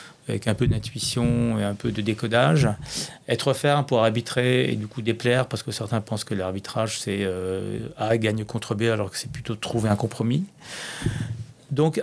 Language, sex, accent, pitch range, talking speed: French, male, French, 110-130 Hz, 180 wpm